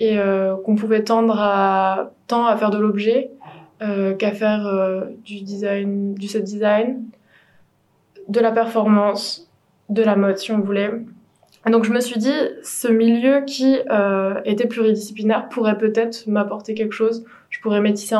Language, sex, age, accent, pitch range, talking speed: French, female, 20-39, French, 195-225 Hz, 160 wpm